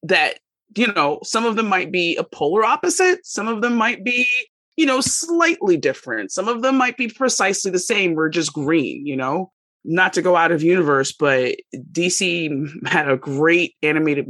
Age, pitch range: 30-49, 160-230 Hz